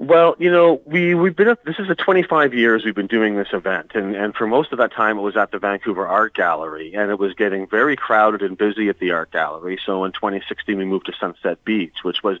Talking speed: 255 wpm